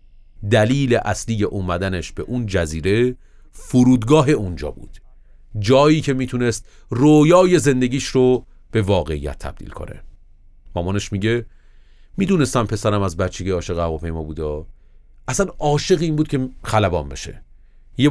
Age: 30-49